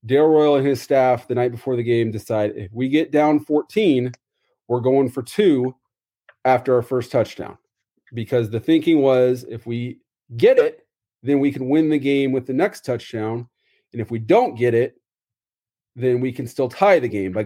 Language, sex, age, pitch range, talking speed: English, male, 30-49, 120-150 Hz, 195 wpm